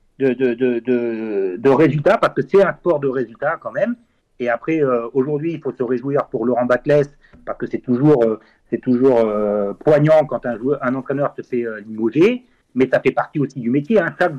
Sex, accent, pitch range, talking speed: male, French, 125-180 Hz, 220 wpm